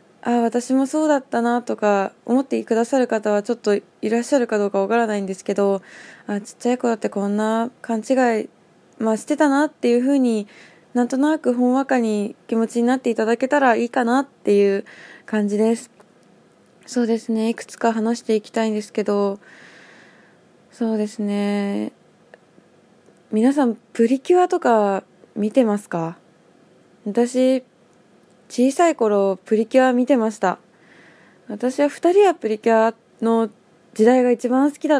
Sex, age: female, 20-39